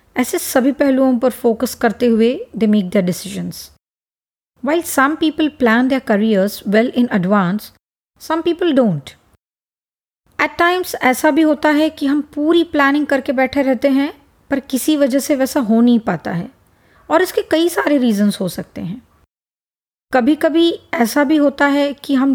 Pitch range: 230-300 Hz